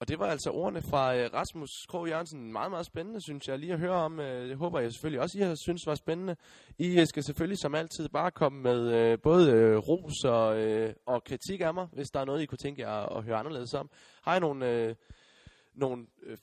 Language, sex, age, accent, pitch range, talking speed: Danish, male, 20-39, native, 120-155 Hz, 240 wpm